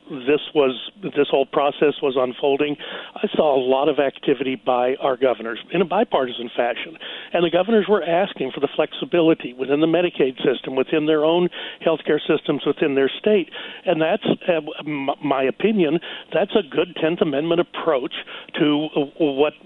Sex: male